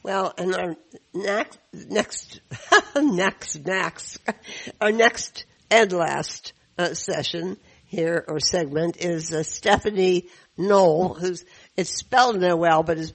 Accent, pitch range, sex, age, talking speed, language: American, 160-190 Hz, female, 60-79, 125 wpm, English